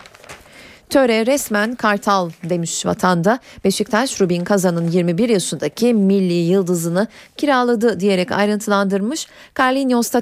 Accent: native